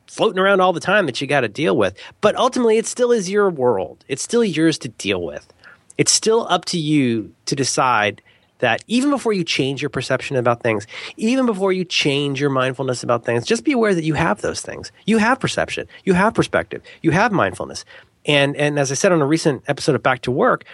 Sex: male